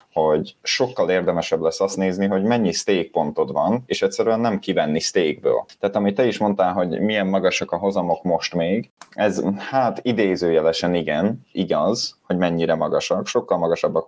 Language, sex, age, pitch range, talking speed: Hungarian, male, 20-39, 85-105 Hz, 160 wpm